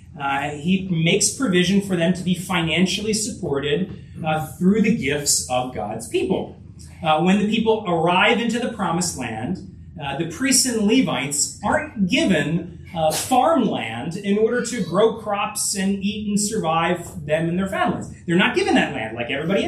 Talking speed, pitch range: 170 wpm, 160-215 Hz